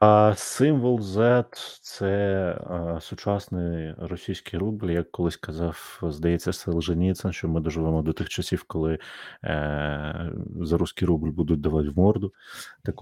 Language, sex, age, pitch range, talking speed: Ukrainian, male, 30-49, 80-95 Hz, 140 wpm